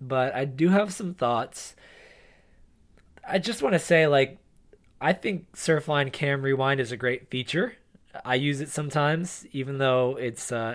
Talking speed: 160 wpm